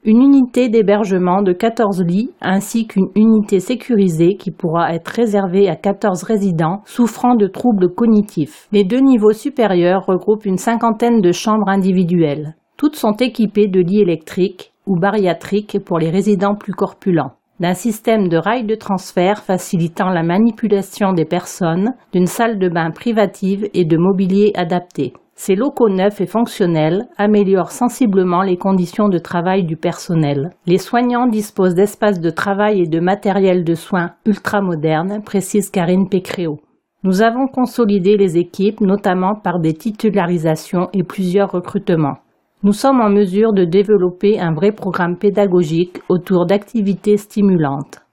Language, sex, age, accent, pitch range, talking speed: French, female, 40-59, French, 180-210 Hz, 145 wpm